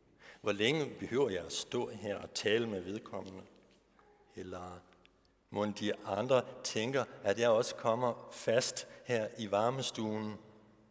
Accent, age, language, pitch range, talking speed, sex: native, 60-79, Danish, 105-155 Hz, 130 wpm, male